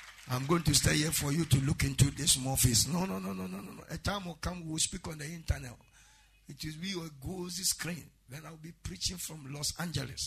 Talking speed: 240 wpm